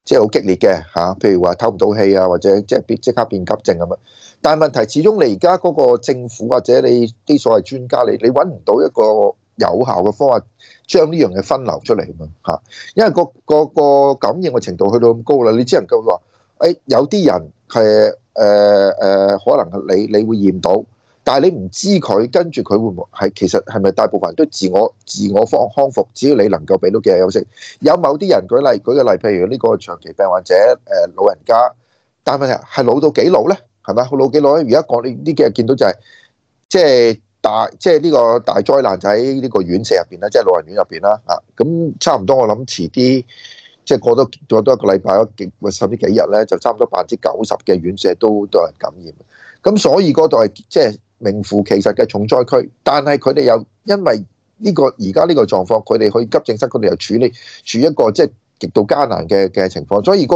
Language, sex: Chinese, male